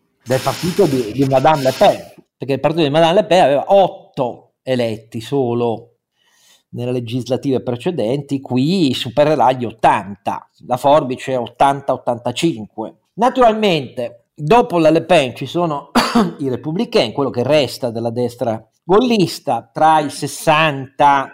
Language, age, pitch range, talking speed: Italian, 40-59, 125-165 Hz, 130 wpm